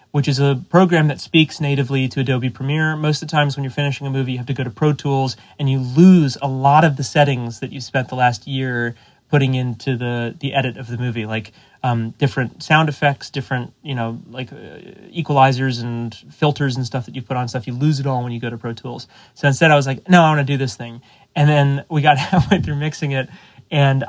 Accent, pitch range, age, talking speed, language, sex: American, 120-145 Hz, 30-49, 245 wpm, English, male